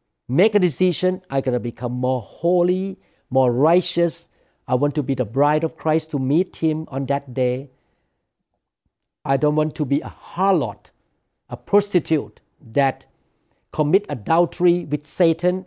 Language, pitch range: English, 125-160 Hz